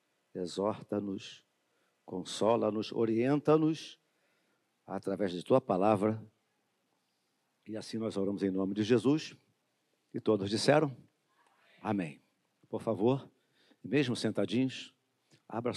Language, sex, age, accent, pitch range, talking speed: Portuguese, male, 50-69, Brazilian, 105-140 Hz, 90 wpm